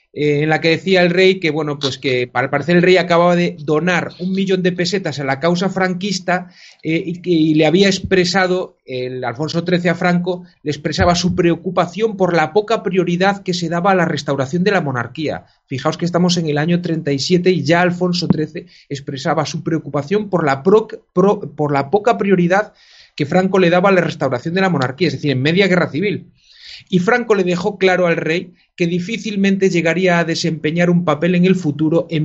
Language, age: Spanish, 30-49